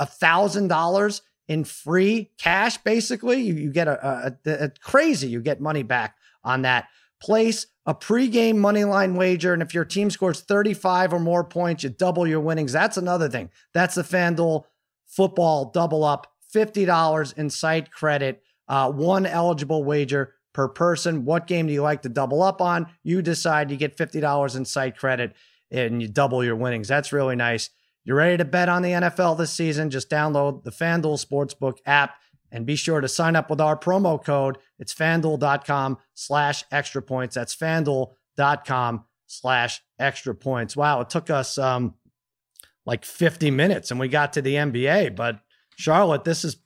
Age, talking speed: 30-49, 170 wpm